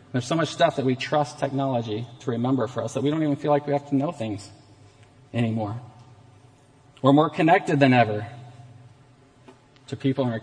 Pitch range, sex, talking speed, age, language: 125-145 Hz, male, 190 wpm, 40-59, English